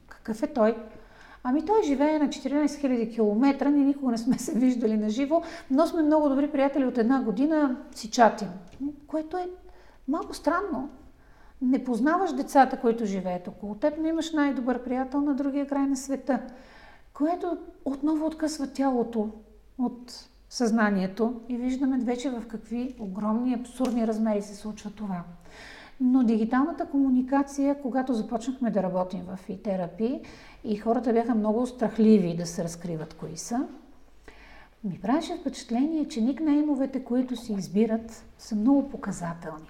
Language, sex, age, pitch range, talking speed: Bulgarian, female, 50-69, 210-275 Hz, 145 wpm